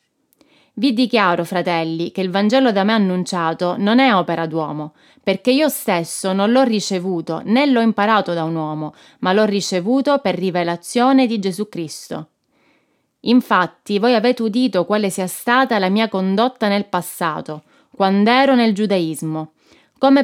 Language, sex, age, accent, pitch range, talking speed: Italian, female, 20-39, native, 180-245 Hz, 150 wpm